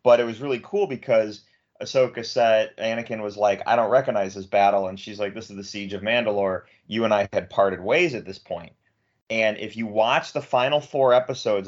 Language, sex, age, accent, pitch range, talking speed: English, male, 30-49, American, 100-120 Hz, 215 wpm